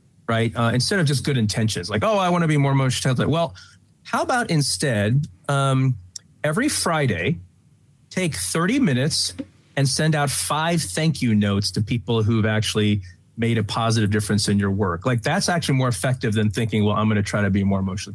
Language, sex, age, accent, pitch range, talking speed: English, male, 30-49, American, 110-135 Hz, 200 wpm